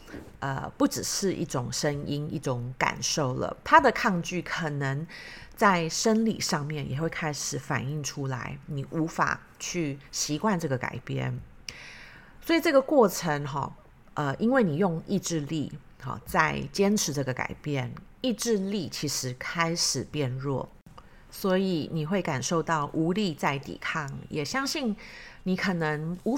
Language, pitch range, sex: Chinese, 150-205 Hz, female